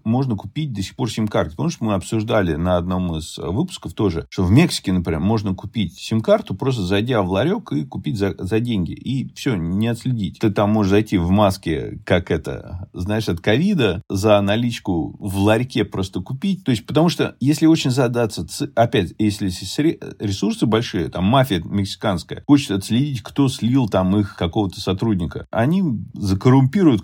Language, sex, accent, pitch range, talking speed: Russian, male, native, 95-130 Hz, 170 wpm